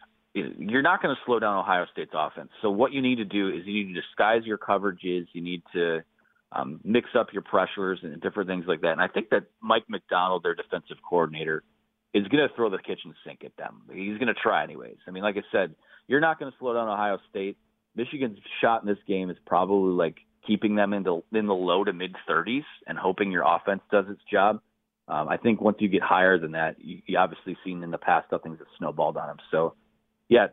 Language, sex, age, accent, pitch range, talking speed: English, male, 30-49, American, 95-115 Hz, 235 wpm